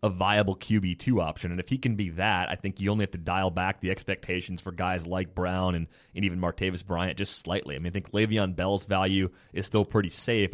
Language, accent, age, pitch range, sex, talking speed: English, American, 30-49, 90-105 Hz, male, 240 wpm